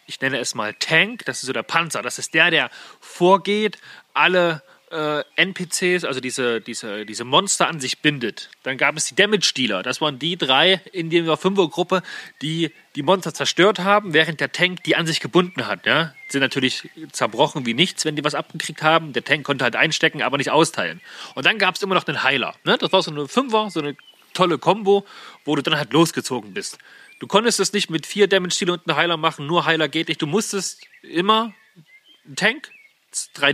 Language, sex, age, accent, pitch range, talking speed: German, male, 30-49, German, 145-195 Hz, 205 wpm